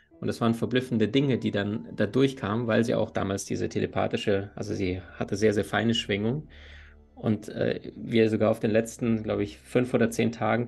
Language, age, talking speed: German, 20-39, 195 wpm